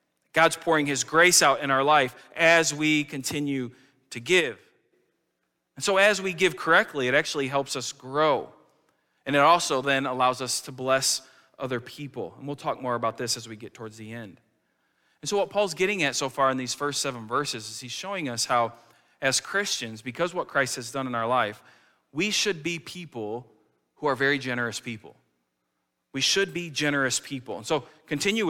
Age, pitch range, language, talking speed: 40-59, 125-165 Hz, English, 190 wpm